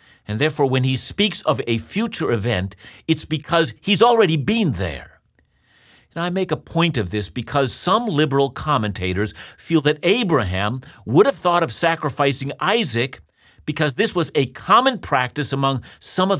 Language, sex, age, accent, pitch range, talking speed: English, male, 50-69, American, 115-165 Hz, 160 wpm